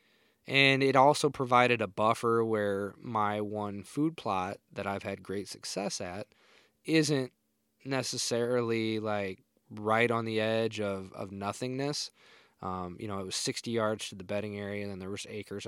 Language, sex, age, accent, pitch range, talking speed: English, male, 20-39, American, 100-120 Hz, 165 wpm